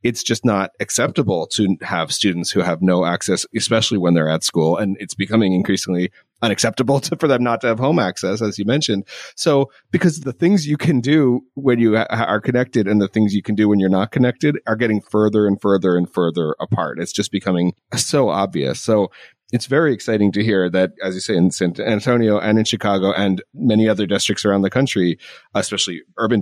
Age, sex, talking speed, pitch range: 30-49, male, 205 wpm, 95-125 Hz